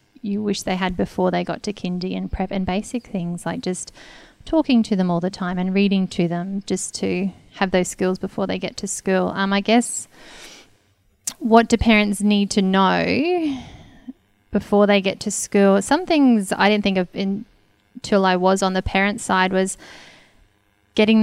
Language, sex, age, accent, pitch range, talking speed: English, female, 20-39, Australian, 185-210 Hz, 185 wpm